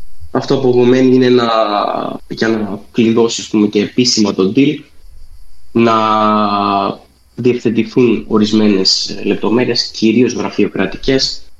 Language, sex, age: Greek, male, 20-39